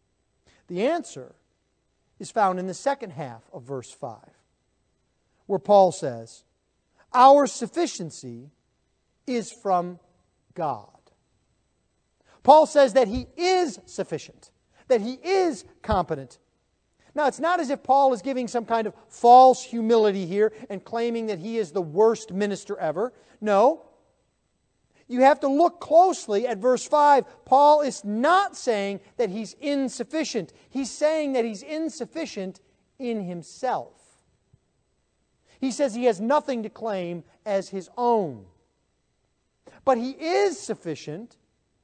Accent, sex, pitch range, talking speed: American, male, 200-280 Hz, 130 wpm